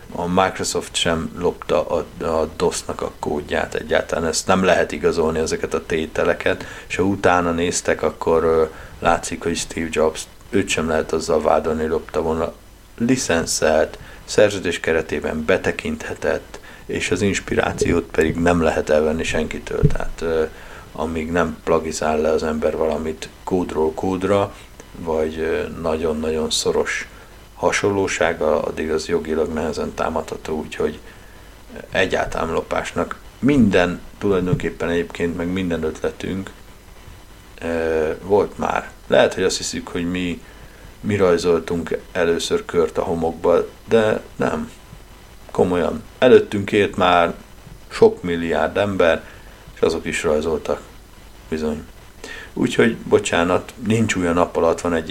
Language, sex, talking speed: Hungarian, male, 120 wpm